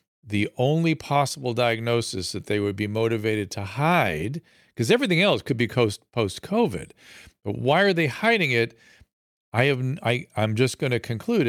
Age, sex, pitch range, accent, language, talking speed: 50-69, male, 110-155 Hz, American, English, 165 wpm